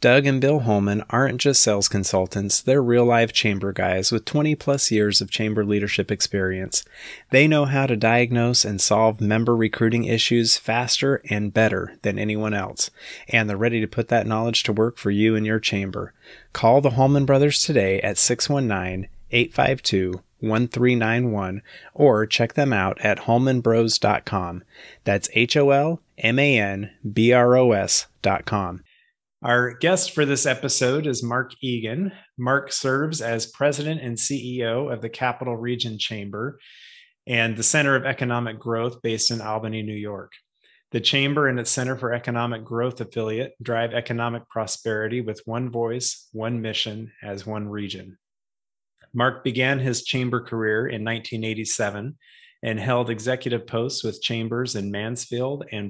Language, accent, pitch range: English, American, 110-125 Hz